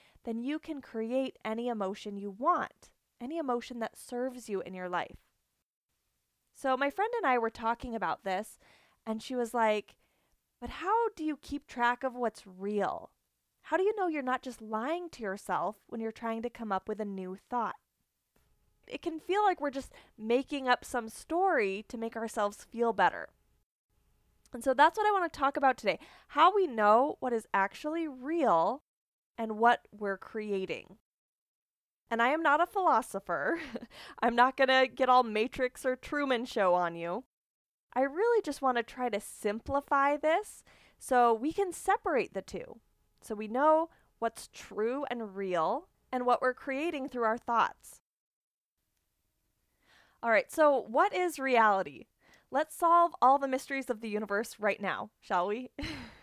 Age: 20-39